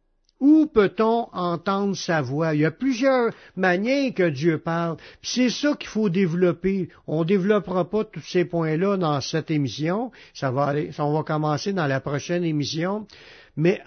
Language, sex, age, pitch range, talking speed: French, male, 60-79, 135-185 Hz, 165 wpm